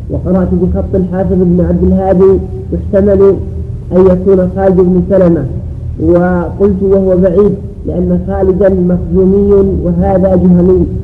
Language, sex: Arabic, male